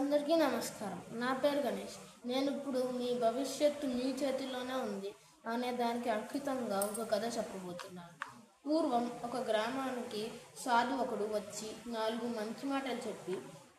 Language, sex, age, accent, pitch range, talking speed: English, female, 20-39, Indian, 220-260 Hz, 75 wpm